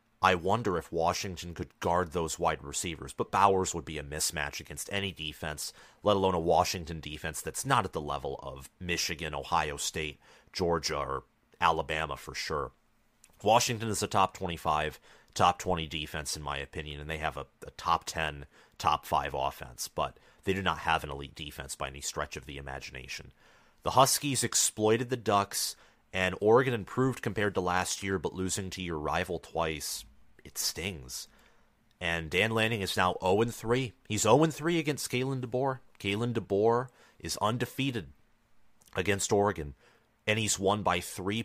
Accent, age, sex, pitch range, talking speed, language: American, 30-49, male, 80-110 Hz, 165 wpm, English